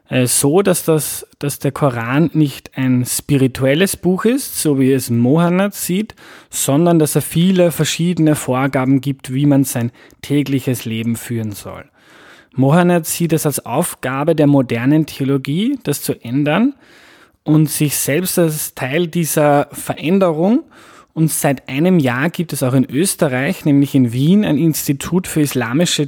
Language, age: German, 20-39